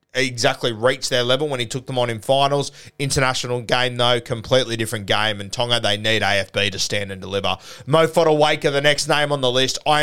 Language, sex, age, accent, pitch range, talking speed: English, male, 20-39, Australian, 120-145 Hz, 210 wpm